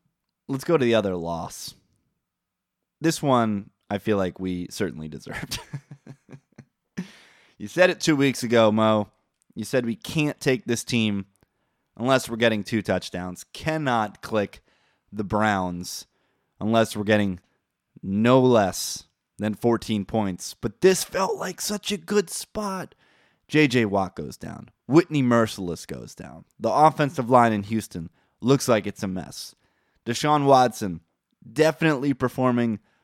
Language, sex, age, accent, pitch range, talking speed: English, male, 20-39, American, 105-125 Hz, 135 wpm